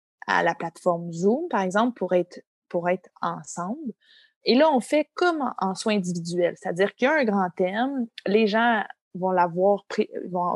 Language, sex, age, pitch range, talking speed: French, female, 20-39, 185-230 Hz, 180 wpm